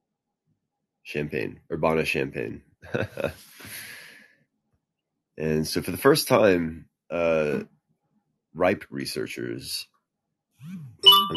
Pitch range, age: 75-95 Hz, 30-49